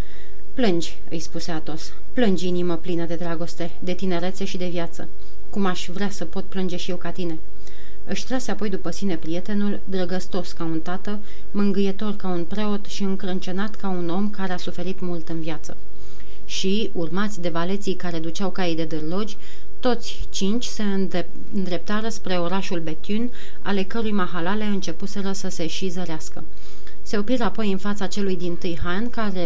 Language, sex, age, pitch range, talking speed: Romanian, female, 30-49, 170-205 Hz, 170 wpm